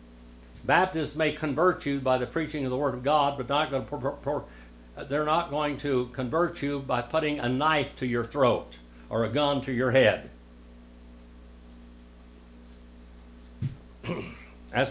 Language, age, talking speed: English, 60-79, 155 wpm